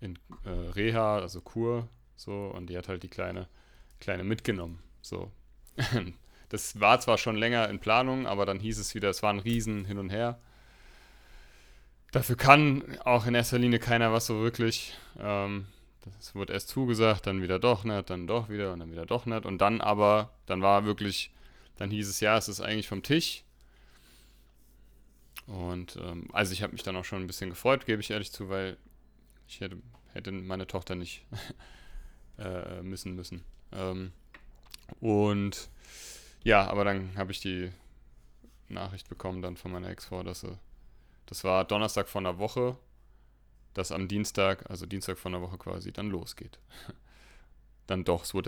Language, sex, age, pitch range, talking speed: German, male, 30-49, 90-110 Hz, 170 wpm